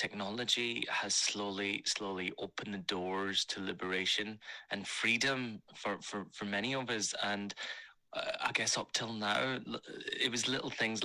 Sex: male